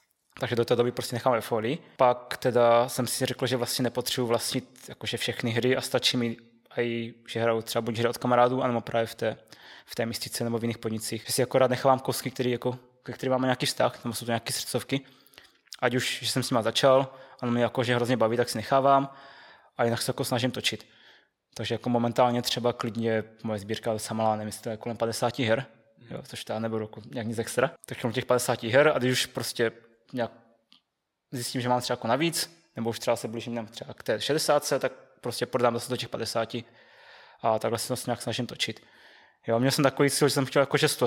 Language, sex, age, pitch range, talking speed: Czech, male, 20-39, 115-130 Hz, 210 wpm